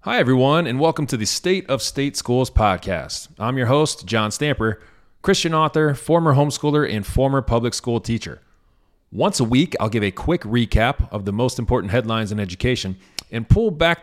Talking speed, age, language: 185 wpm, 30-49, English